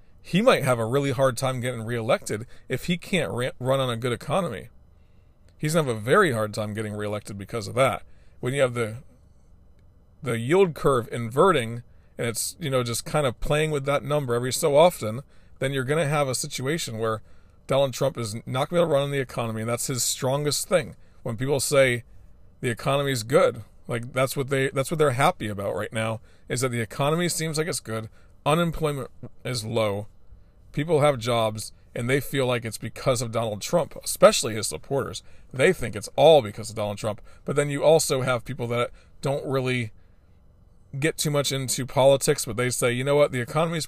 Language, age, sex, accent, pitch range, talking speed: English, 40-59, male, American, 110-140 Hz, 205 wpm